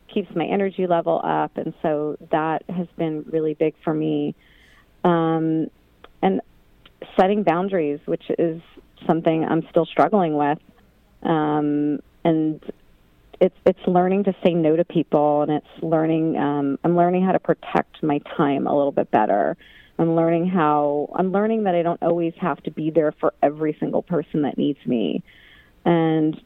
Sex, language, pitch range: female, English, 150-180 Hz